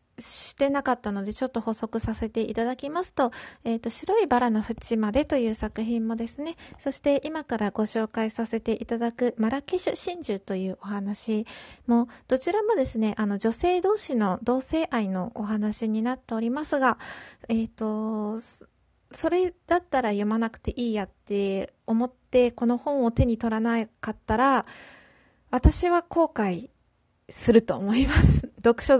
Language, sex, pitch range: Japanese, female, 210-260 Hz